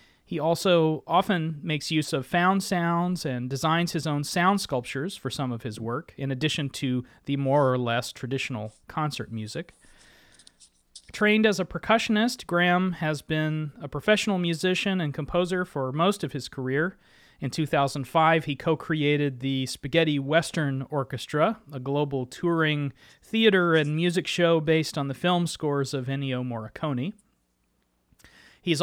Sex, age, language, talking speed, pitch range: male, 30-49, English, 145 wpm, 135-175 Hz